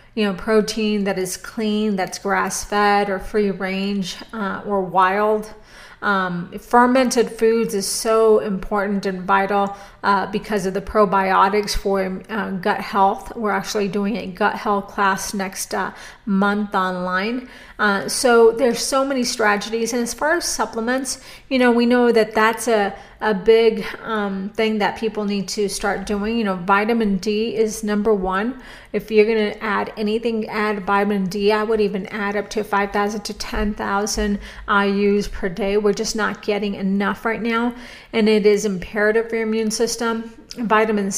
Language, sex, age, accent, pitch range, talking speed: English, female, 40-59, American, 200-225 Hz, 170 wpm